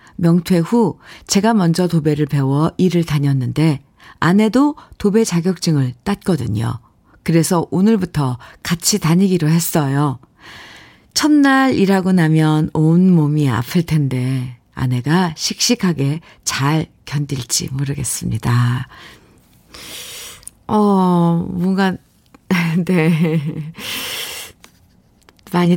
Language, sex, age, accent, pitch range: Korean, female, 50-69, native, 145-190 Hz